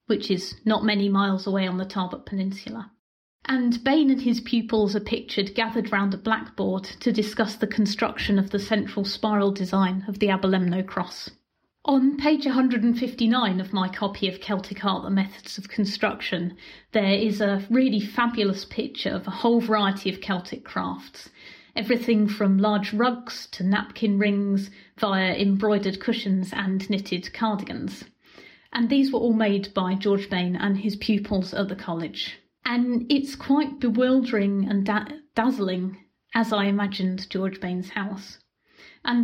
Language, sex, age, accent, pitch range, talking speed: English, female, 30-49, British, 195-235 Hz, 155 wpm